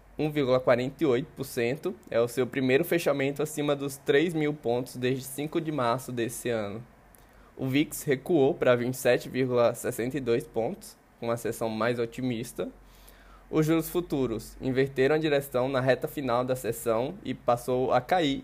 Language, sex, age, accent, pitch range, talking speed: Portuguese, male, 20-39, Brazilian, 120-145 Hz, 135 wpm